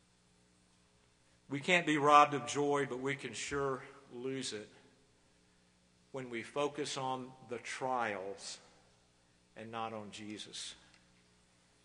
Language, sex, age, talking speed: English, male, 50-69, 110 wpm